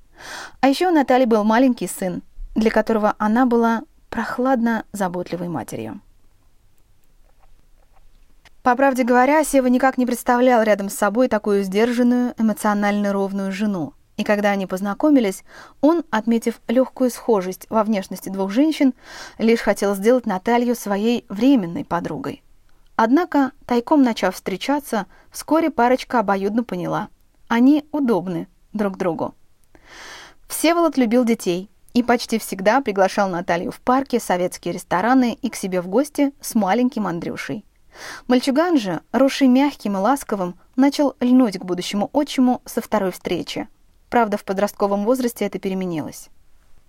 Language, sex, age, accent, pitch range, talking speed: Russian, female, 20-39, native, 200-260 Hz, 125 wpm